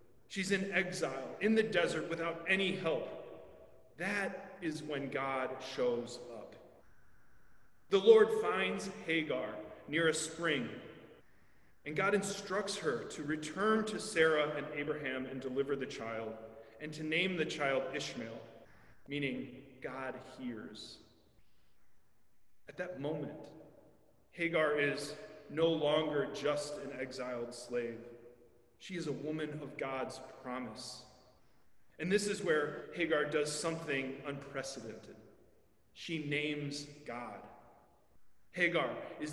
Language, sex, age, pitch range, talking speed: English, male, 30-49, 130-170 Hz, 115 wpm